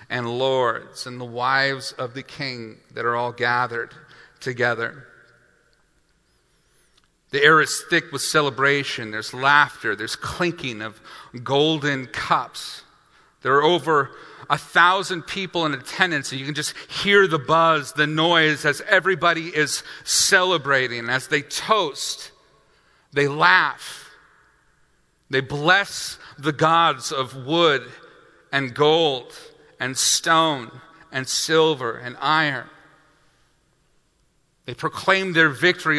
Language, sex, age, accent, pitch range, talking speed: English, male, 40-59, American, 130-165 Hz, 115 wpm